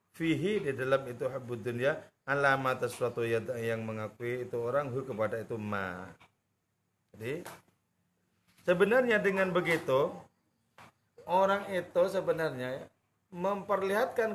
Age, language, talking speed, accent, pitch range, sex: 40-59, English, 95 wpm, Indonesian, 125-180 Hz, male